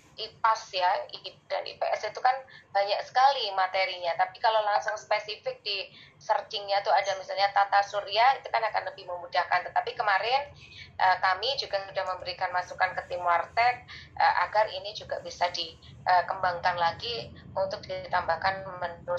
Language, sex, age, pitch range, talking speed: Indonesian, female, 20-39, 180-225 Hz, 135 wpm